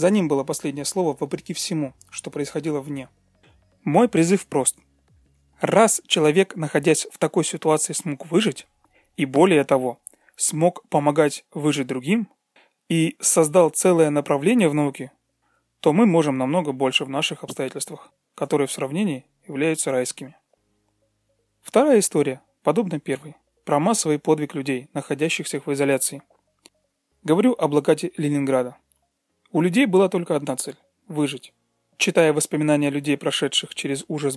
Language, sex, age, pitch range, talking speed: Russian, male, 30-49, 140-175 Hz, 130 wpm